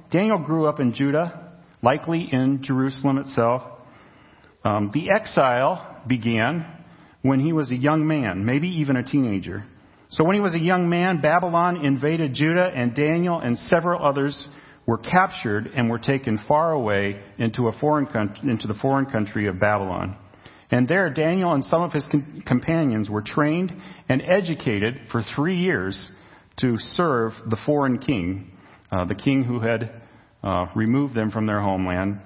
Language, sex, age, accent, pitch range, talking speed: English, male, 40-59, American, 110-155 Hz, 155 wpm